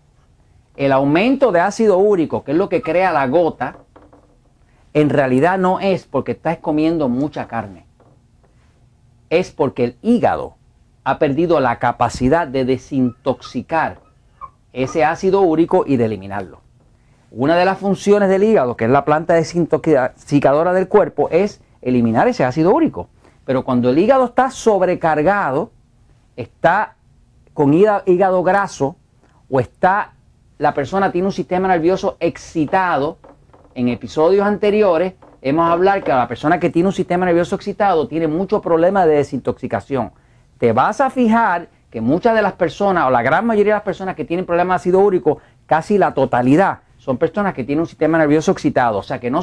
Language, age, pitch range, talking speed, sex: English, 40-59, 130-190 Hz, 155 wpm, male